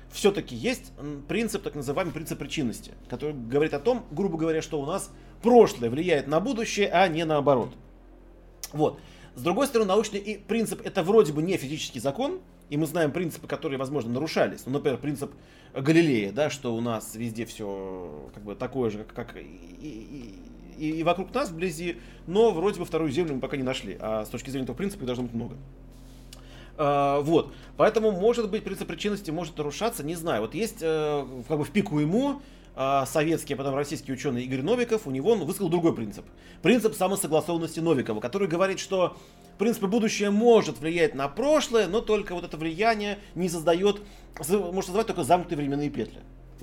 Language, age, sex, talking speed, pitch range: Russian, 30-49, male, 180 wpm, 135-200 Hz